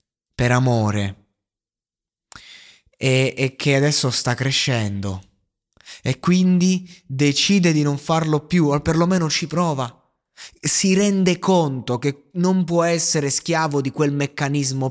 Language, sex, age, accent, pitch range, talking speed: Italian, male, 20-39, native, 125-175 Hz, 120 wpm